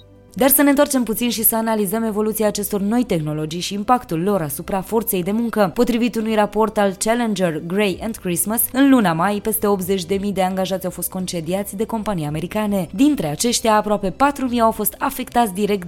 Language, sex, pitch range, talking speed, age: Romanian, female, 180-225 Hz, 180 wpm, 20-39